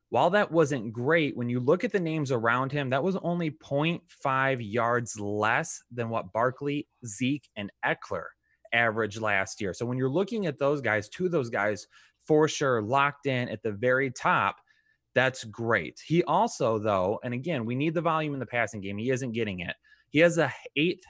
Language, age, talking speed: English, 20-39, 195 wpm